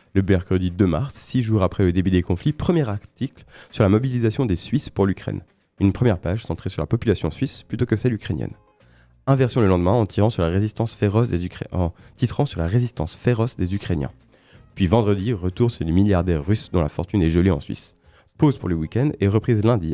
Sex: male